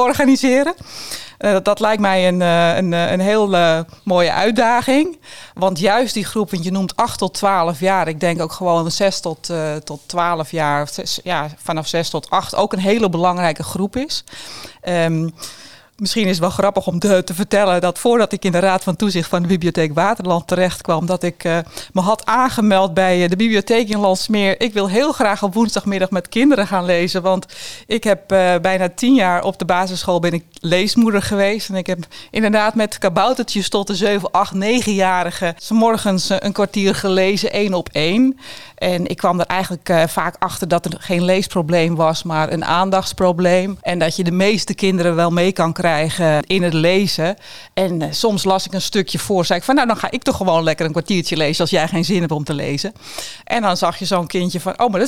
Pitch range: 175-205 Hz